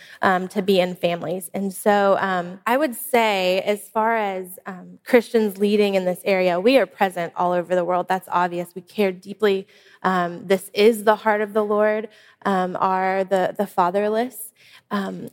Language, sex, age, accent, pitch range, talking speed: English, female, 20-39, American, 185-210 Hz, 180 wpm